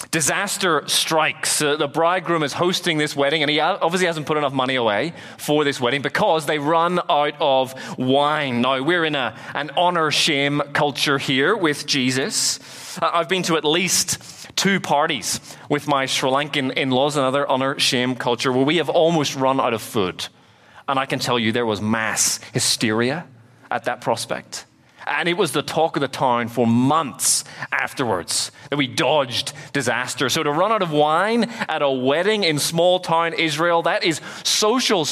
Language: English